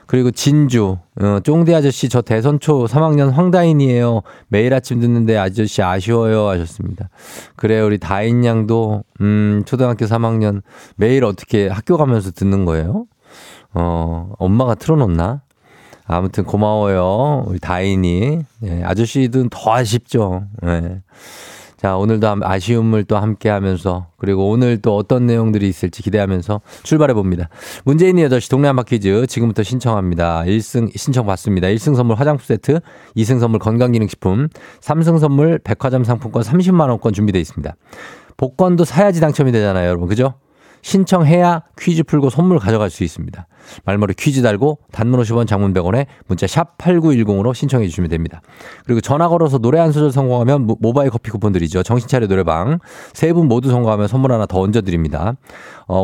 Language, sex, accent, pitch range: Korean, male, native, 100-140 Hz